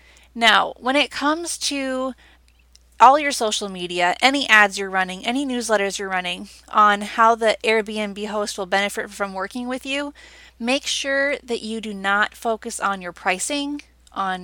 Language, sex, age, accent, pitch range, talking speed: English, female, 20-39, American, 195-245 Hz, 160 wpm